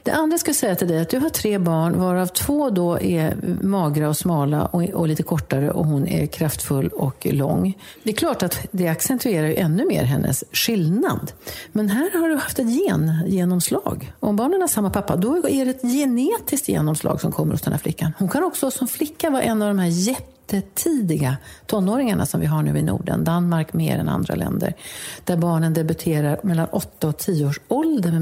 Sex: female